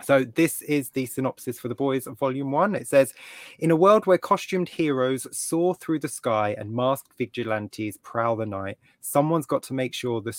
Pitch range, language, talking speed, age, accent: 110-135 Hz, English, 195 wpm, 20-39, British